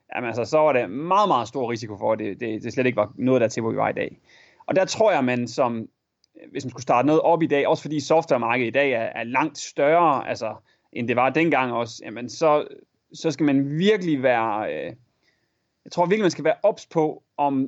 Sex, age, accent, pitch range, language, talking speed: male, 30-49, native, 130-175 Hz, Danish, 240 wpm